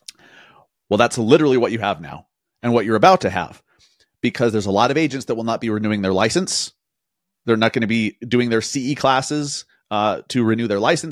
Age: 30-49